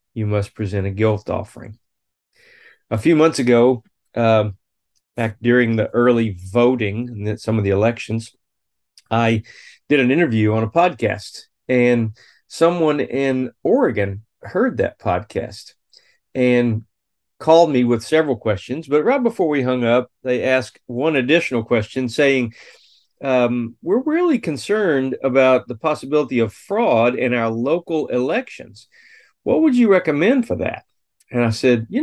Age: 40-59